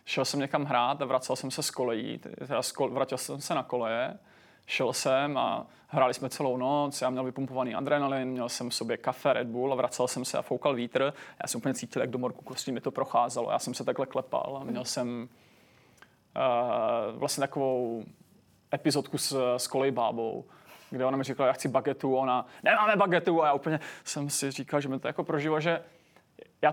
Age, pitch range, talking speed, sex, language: 30-49, 130-150 Hz, 200 wpm, male, Czech